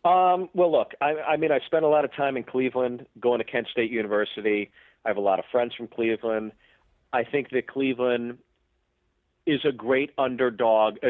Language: English